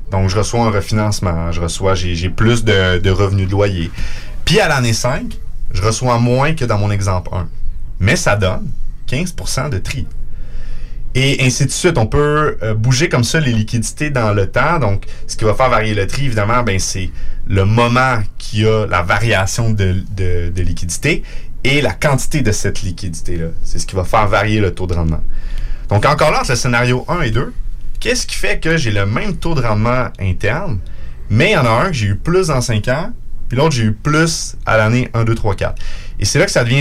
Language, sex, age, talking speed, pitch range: French, male, 30-49, 220 wpm, 95-125 Hz